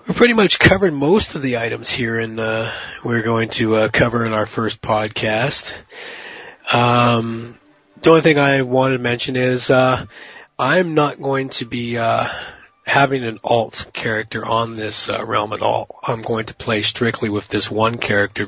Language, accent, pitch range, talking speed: English, American, 105-120 Hz, 180 wpm